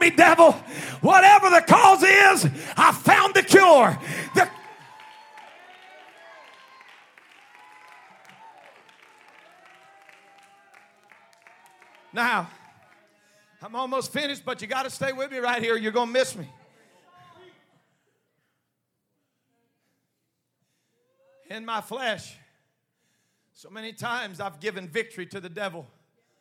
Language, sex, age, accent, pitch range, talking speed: English, male, 40-59, American, 185-260 Hz, 95 wpm